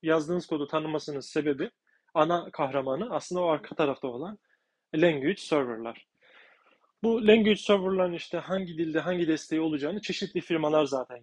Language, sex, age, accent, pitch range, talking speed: Turkish, male, 30-49, native, 145-190 Hz, 135 wpm